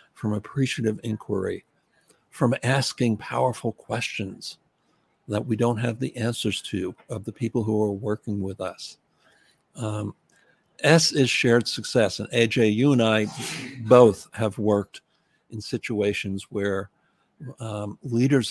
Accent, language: American, English